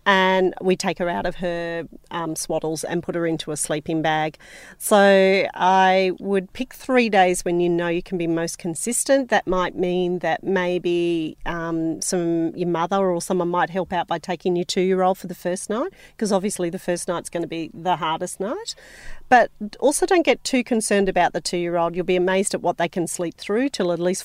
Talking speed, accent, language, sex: 210 wpm, Australian, English, female